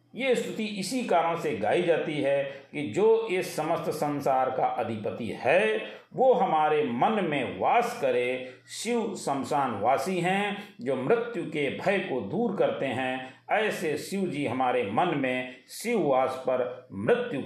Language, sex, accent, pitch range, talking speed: Hindi, male, native, 140-190 Hz, 150 wpm